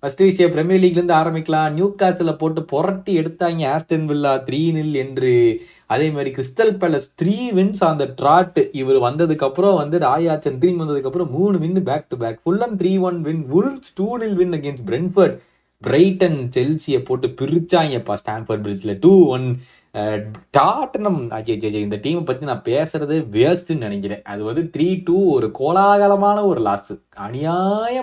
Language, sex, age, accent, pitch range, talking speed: Tamil, male, 30-49, native, 130-180 Hz, 50 wpm